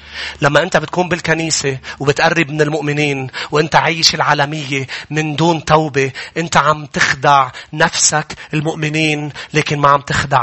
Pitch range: 140-165 Hz